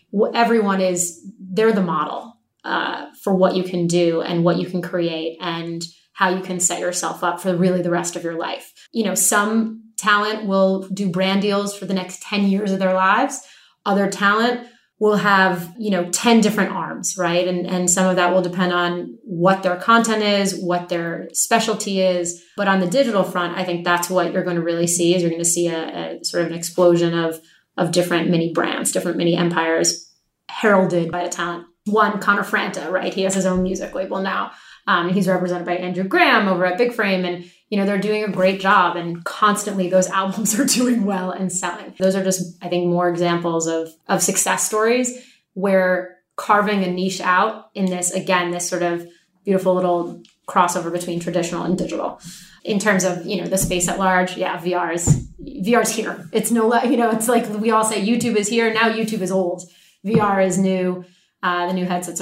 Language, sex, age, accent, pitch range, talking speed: English, female, 20-39, American, 175-205 Hz, 205 wpm